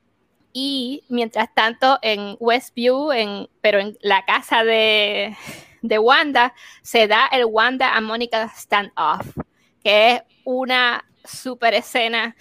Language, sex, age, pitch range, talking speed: Spanish, female, 20-39, 210-255 Hz, 120 wpm